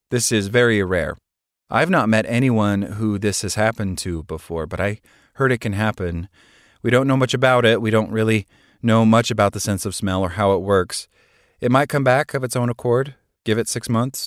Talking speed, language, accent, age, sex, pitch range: 220 wpm, English, American, 30-49, male, 90-115 Hz